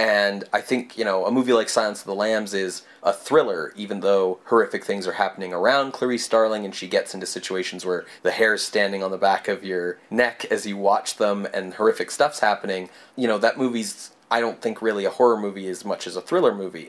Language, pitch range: English, 100-140 Hz